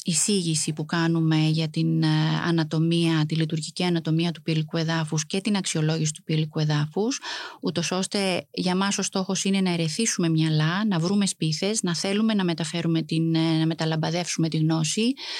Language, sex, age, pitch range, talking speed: Greek, female, 30-49, 160-195 Hz, 155 wpm